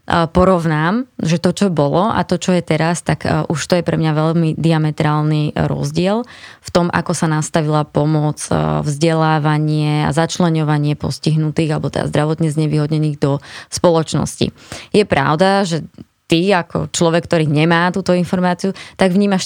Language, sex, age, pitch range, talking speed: Slovak, female, 20-39, 155-175 Hz, 145 wpm